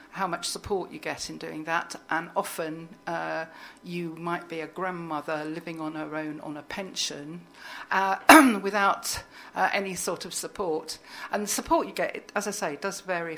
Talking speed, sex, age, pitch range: 180 wpm, female, 50-69, 165-195 Hz